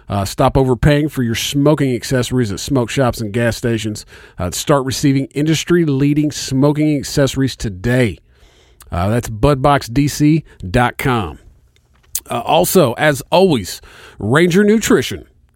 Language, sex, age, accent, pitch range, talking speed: English, male, 40-59, American, 115-150 Hz, 110 wpm